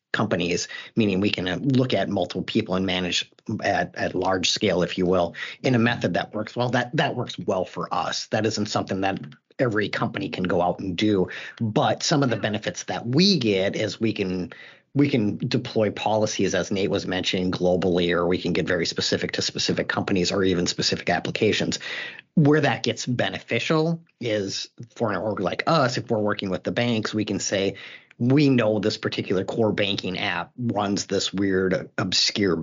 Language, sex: English, male